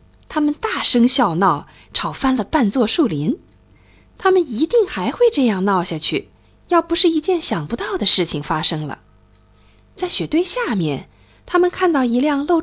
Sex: female